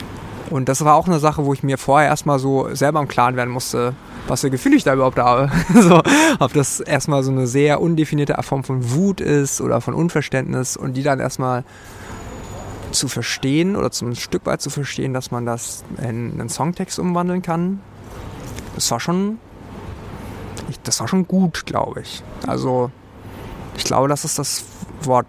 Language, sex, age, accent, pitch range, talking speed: German, male, 20-39, German, 120-150 Hz, 180 wpm